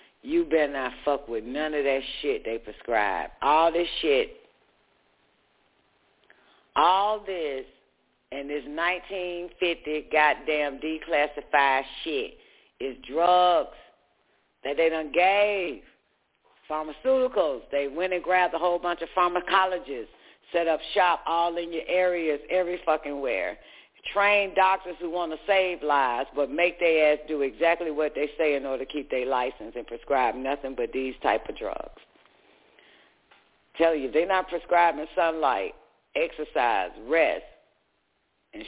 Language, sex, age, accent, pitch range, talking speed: English, female, 50-69, American, 145-185 Hz, 140 wpm